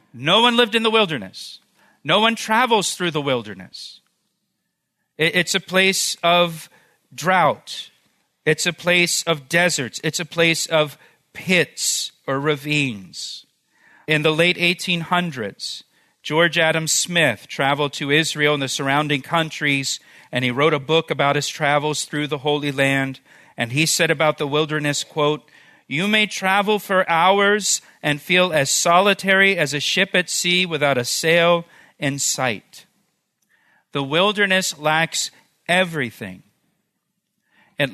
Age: 40-59